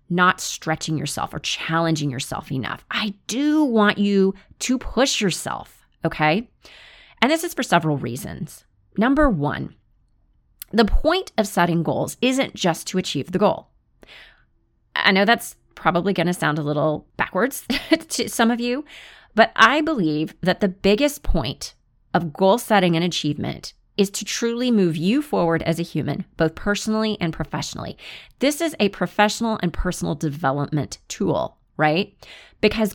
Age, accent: 30-49, American